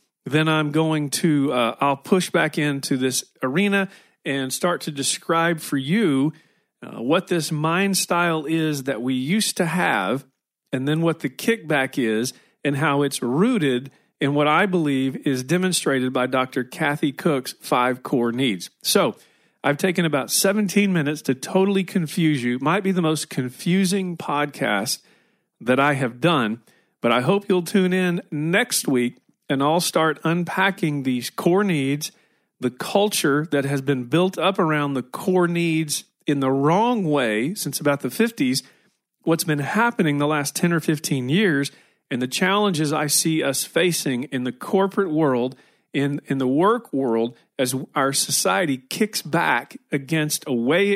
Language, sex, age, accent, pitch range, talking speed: English, male, 40-59, American, 135-180 Hz, 160 wpm